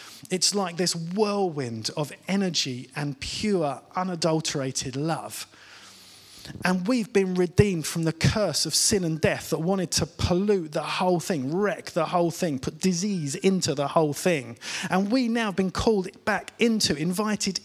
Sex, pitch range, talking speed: male, 115-190 Hz, 155 wpm